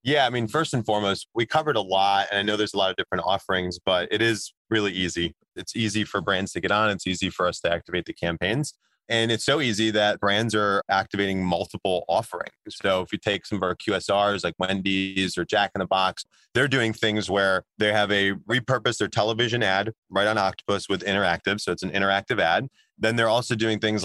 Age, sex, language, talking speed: 30-49, male, English, 225 wpm